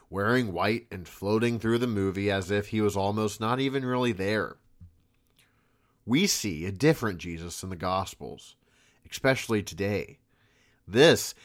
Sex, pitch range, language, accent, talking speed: male, 95-125 Hz, English, American, 140 wpm